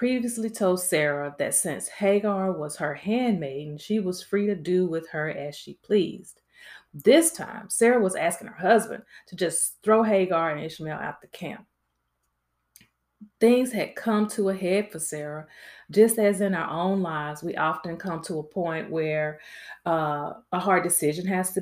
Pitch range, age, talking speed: 160-220 Hz, 30-49, 170 wpm